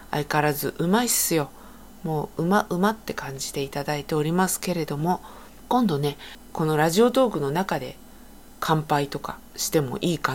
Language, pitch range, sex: Japanese, 145-215 Hz, female